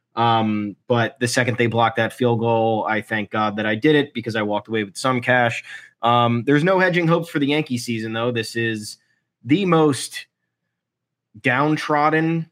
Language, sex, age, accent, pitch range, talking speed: English, male, 20-39, American, 115-125 Hz, 180 wpm